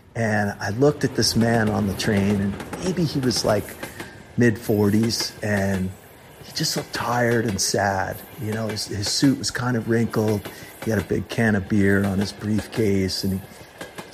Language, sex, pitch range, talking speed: English, male, 105-135 Hz, 185 wpm